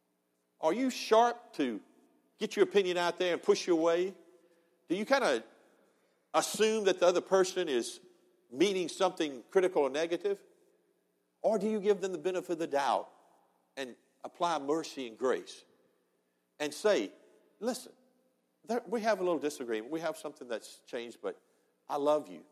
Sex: male